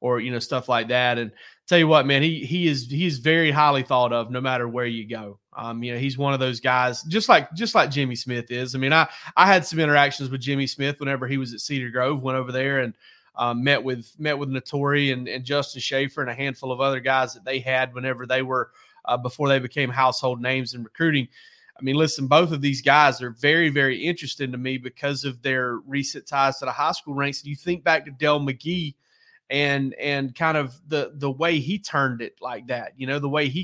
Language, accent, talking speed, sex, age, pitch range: English, American, 245 wpm, male, 30-49, 130-150 Hz